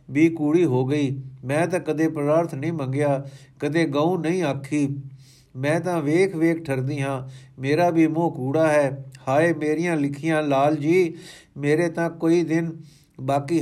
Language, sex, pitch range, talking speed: Punjabi, male, 135-165 Hz, 155 wpm